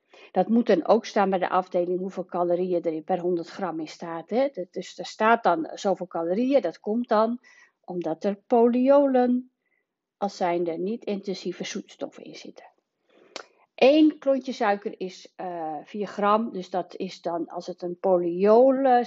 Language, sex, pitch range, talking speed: Dutch, female, 185-265 Hz, 155 wpm